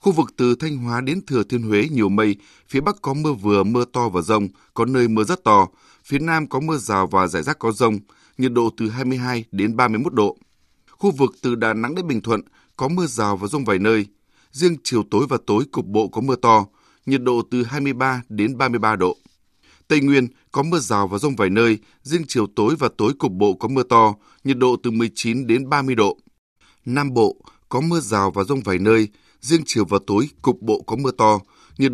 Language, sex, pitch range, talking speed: Vietnamese, male, 110-135 Hz, 240 wpm